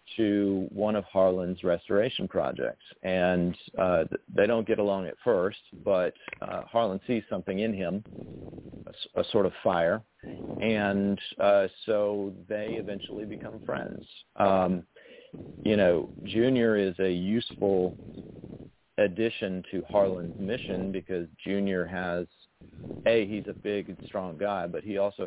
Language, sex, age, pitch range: English, male, 50-69, 95-110 Hz